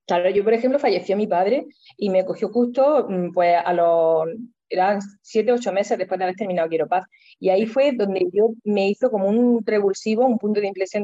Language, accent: Spanish, Spanish